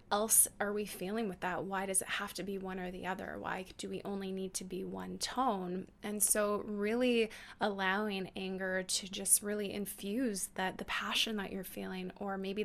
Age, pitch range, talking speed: 20-39, 185-210 Hz, 200 wpm